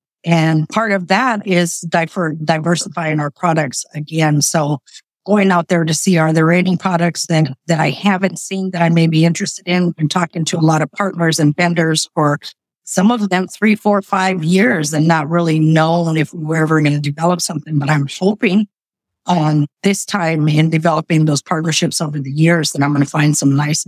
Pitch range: 155-195 Hz